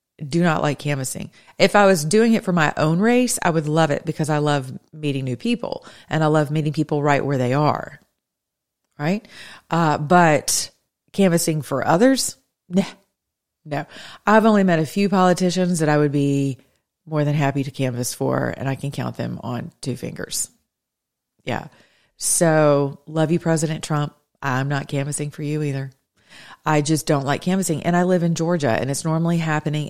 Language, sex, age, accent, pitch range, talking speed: English, female, 30-49, American, 145-170 Hz, 180 wpm